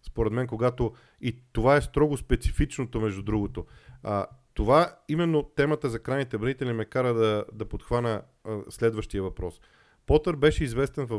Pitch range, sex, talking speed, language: 105-135 Hz, male, 155 wpm, Bulgarian